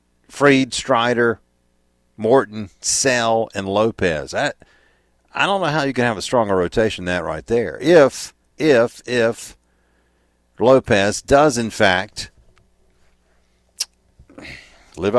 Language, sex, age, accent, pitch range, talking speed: English, male, 50-69, American, 75-115 Hz, 115 wpm